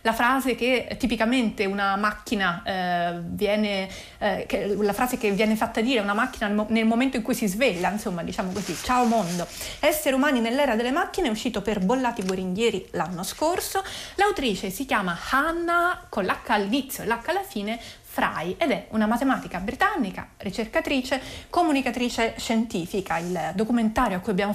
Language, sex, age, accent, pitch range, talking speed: Italian, female, 30-49, native, 200-260 Hz, 165 wpm